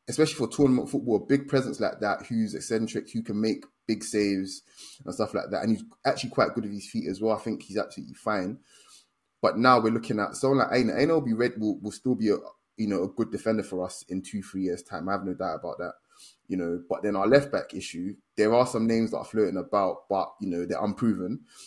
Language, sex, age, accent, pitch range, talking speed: English, male, 20-39, British, 100-125 Hz, 245 wpm